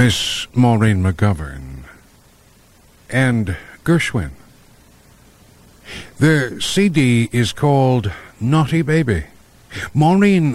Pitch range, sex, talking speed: 95-140 Hz, male, 70 wpm